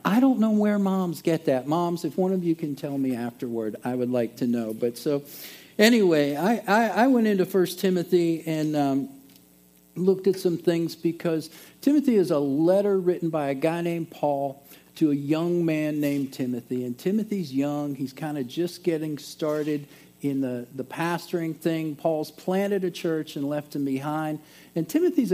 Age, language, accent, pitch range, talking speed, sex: 50-69, English, American, 145-185 Hz, 185 wpm, male